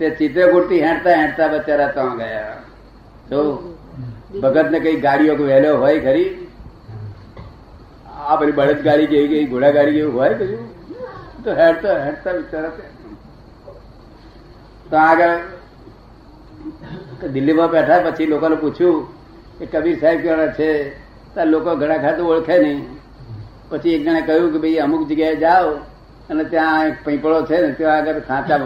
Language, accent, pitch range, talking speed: Gujarati, native, 145-170 Hz, 80 wpm